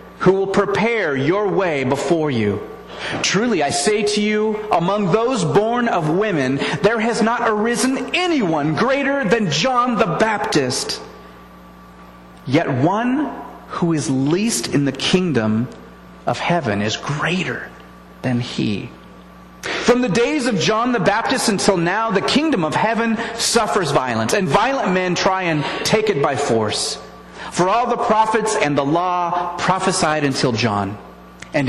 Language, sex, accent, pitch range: English, male, American, 135-225 Hz